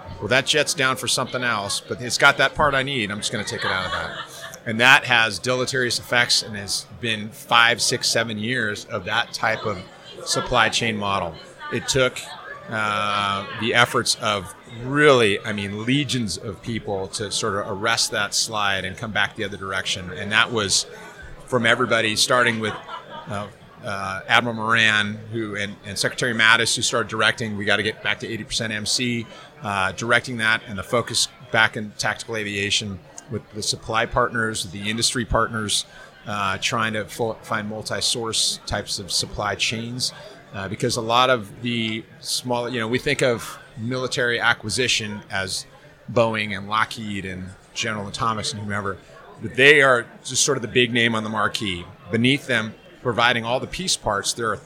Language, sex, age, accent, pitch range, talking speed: English, male, 30-49, American, 105-125 Hz, 180 wpm